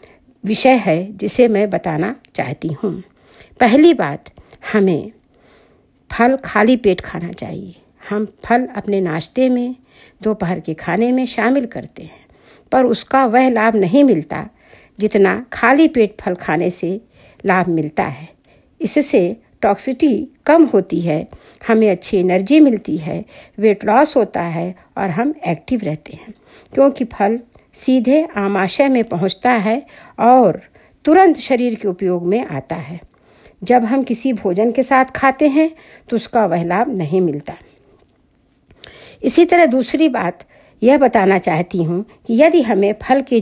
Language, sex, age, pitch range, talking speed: Hindi, female, 60-79, 190-265 Hz, 140 wpm